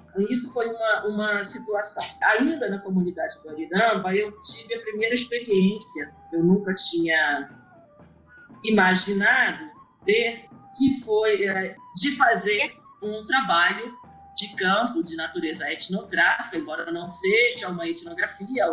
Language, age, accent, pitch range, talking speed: Portuguese, 40-59, Brazilian, 185-235 Hz, 120 wpm